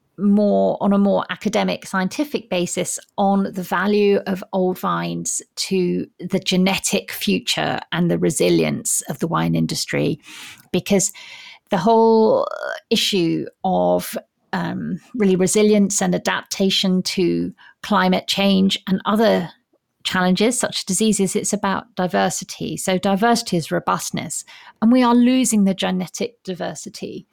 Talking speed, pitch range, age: 125 wpm, 180-215 Hz, 40-59